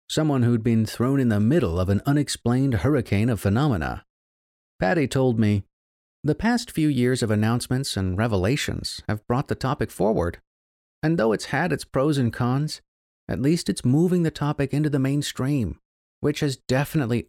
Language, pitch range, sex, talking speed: English, 105-155 Hz, male, 170 wpm